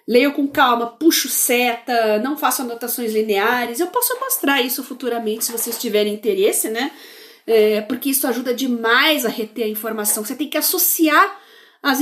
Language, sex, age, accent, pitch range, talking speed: Portuguese, female, 40-59, Brazilian, 225-285 Hz, 160 wpm